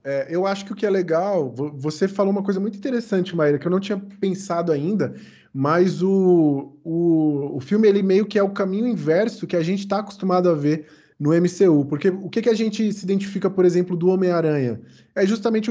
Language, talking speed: Portuguese, 200 wpm